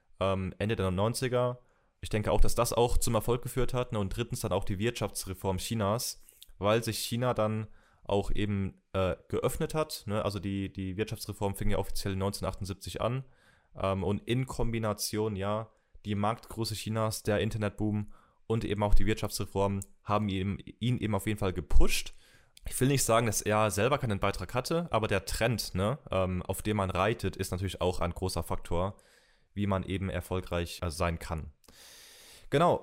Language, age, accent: German, 20-39, German